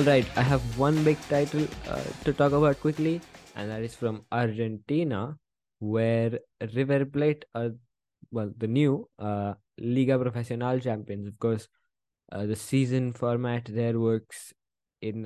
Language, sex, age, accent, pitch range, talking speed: English, male, 20-39, Indian, 110-135 Hz, 140 wpm